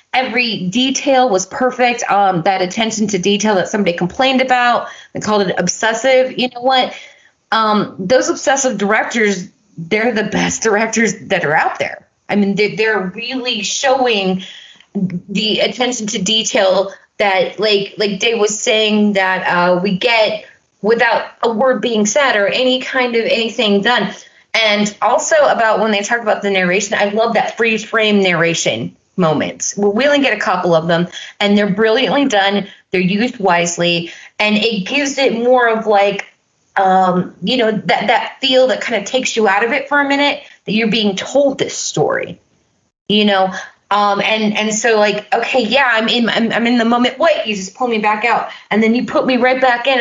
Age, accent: 30-49, American